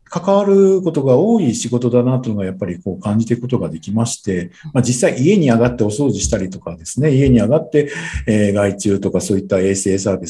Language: Japanese